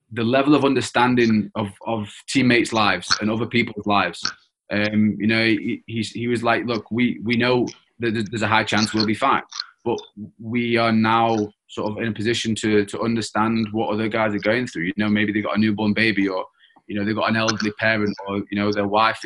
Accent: British